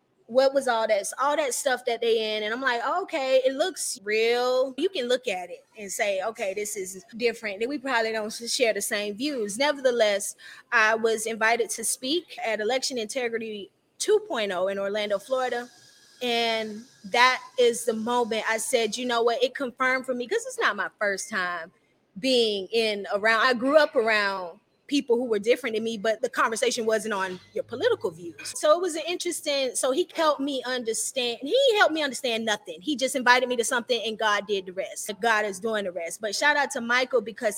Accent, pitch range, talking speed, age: American, 220-285 Hz, 205 wpm, 20-39